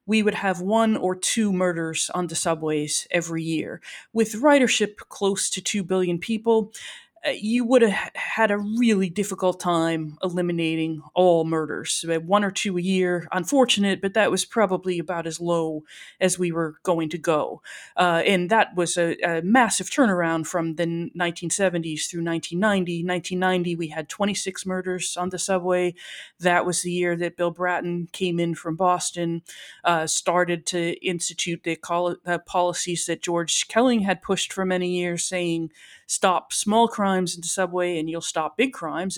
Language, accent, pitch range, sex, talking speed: English, American, 165-190 Hz, female, 165 wpm